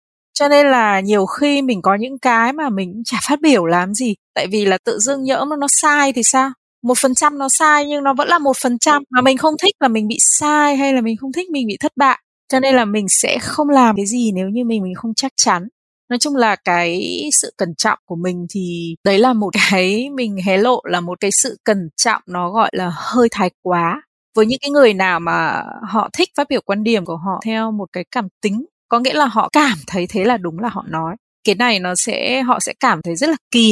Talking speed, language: 255 wpm, Vietnamese